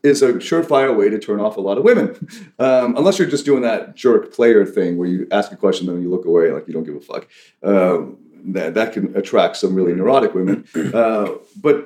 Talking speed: 240 wpm